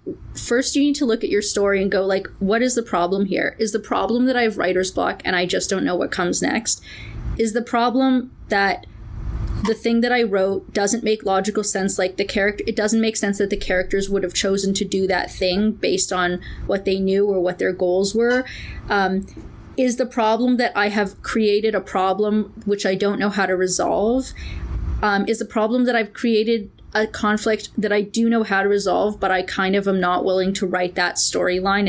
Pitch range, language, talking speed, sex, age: 190-225 Hz, English, 220 wpm, female, 20-39